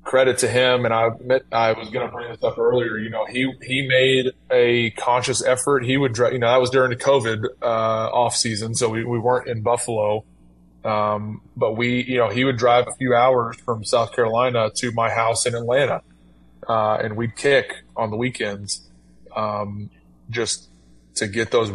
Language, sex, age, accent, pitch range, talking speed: English, male, 20-39, American, 105-125 Hz, 200 wpm